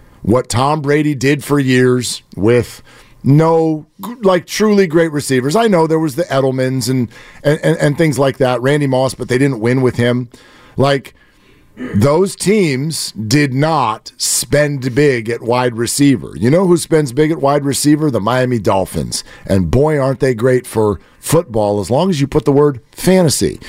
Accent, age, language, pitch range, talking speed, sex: American, 50-69, English, 120-155 Hz, 175 wpm, male